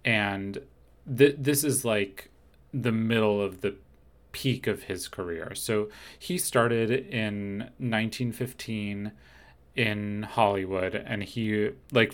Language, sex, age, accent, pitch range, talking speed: English, male, 30-49, American, 95-110 Hz, 110 wpm